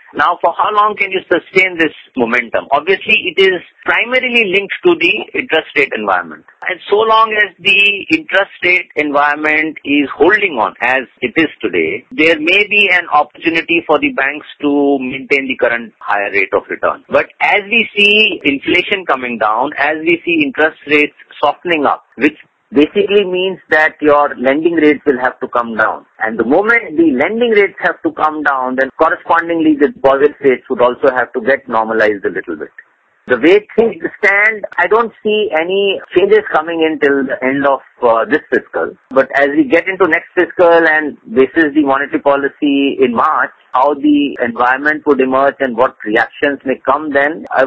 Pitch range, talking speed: 140-210 Hz, 185 wpm